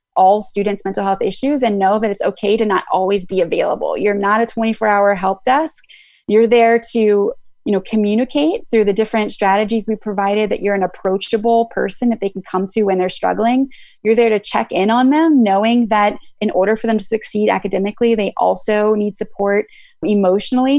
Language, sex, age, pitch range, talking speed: English, female, 20-39, 195-230 Hz, 195 wpm